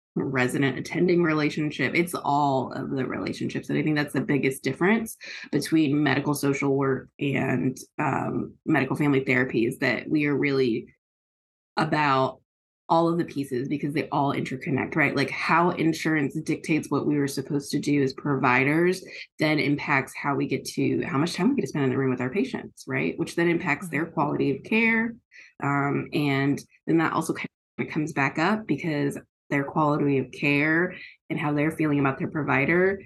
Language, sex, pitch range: English, female, 135-170 Hz